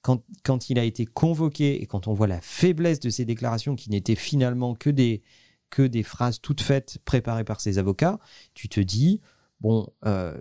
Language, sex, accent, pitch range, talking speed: French, male, French, 105-135 Hz, 195 wpm